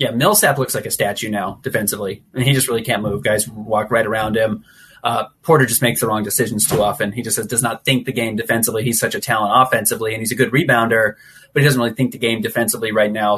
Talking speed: 250 wpm